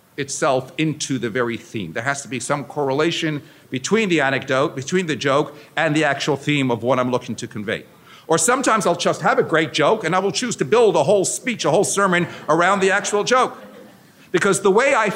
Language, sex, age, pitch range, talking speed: English, male, 50-69, 140-185 Hz, 220 wpm